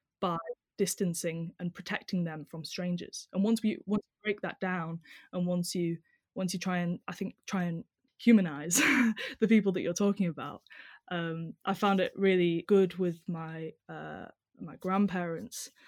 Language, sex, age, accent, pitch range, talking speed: English, female, 10-29, British, 170-200 Hz, 165 wpm